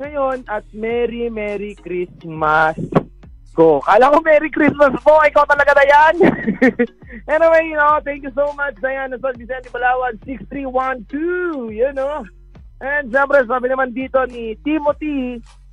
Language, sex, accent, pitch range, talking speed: Filipino, male, native, 195-265 Hz, 135 wpm